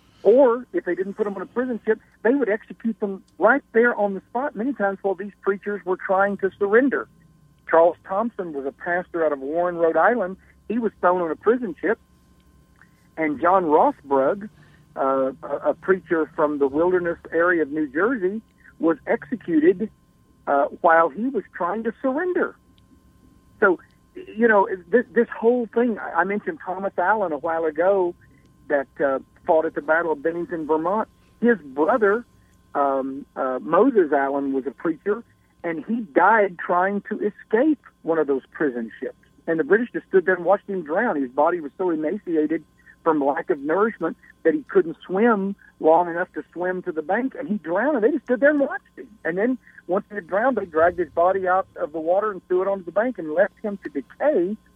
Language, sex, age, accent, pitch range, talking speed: English, male, 60-79, American, 160-215 Hz, 190 wpm